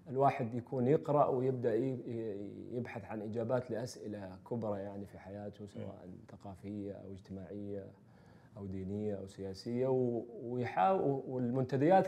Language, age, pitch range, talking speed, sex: Arabic, 30-49, 105-130 Hz, 105 wpm, male